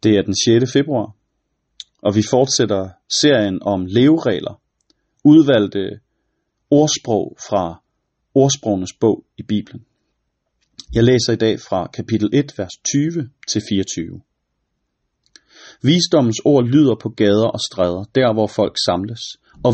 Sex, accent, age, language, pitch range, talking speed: male, native, 30-49, Danish, 105-145 Hz, 125 wpm